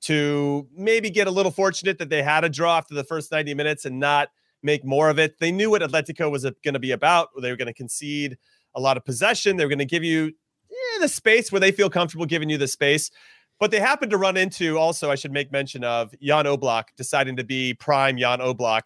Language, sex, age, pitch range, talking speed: English, male, 30-49, 135-170 Hz, 245 wpm